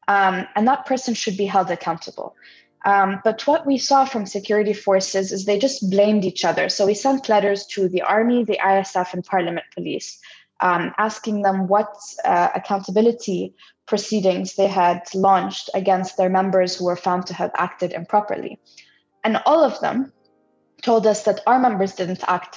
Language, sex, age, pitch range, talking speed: English, female, 20-39, 185-225 Hz, 175 wpm